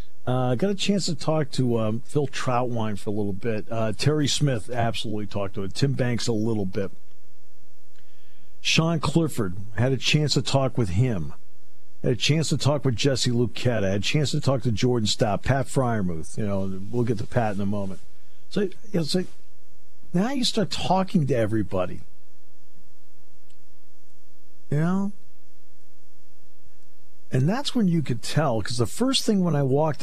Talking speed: 175 wpm